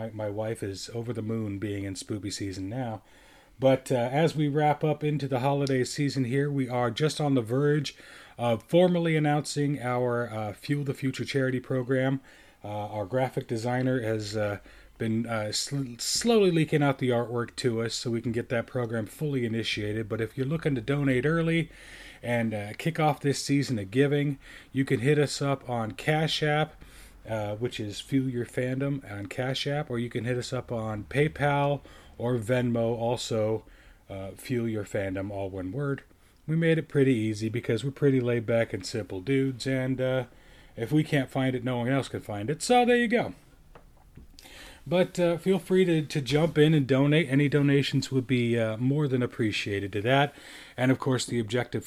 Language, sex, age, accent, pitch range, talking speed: English, male, 30-49, American, 115-145 Hz, 190 wpm